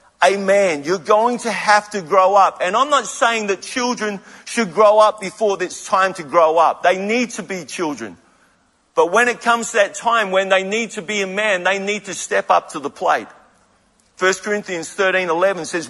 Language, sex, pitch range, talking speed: English, male, 160-225 Hz, 210 wpm